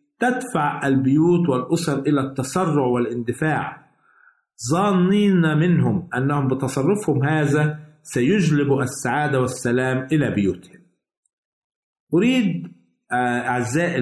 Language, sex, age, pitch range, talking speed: Arabic, male, 50-69, 130-165 Hz, 75 wpm